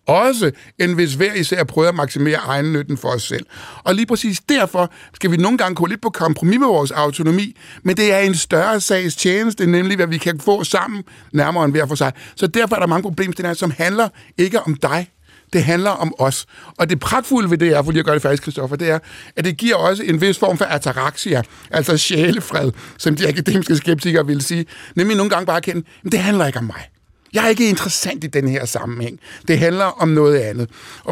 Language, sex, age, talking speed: Danish, male, 60-79, 225 wpm